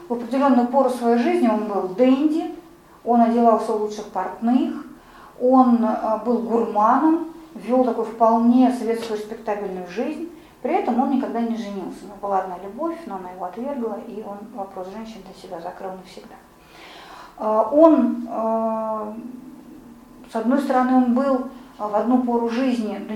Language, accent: Russian, native